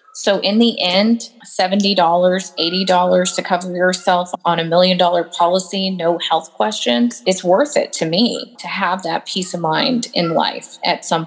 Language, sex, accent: English, female, American